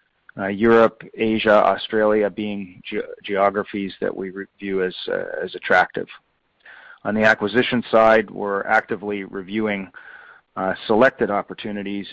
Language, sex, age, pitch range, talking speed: English, male, 40-59, 100-115 Hz, 115 wpm